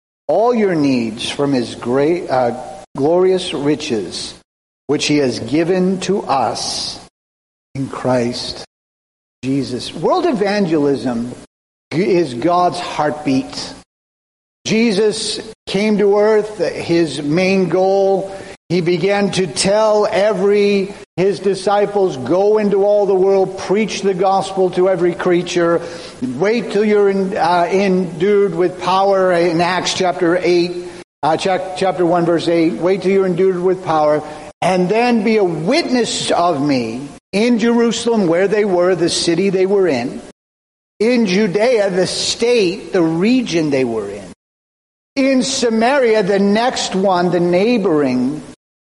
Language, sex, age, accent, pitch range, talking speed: English, male, 50-69, American, 165-205 Hz, 125 wpm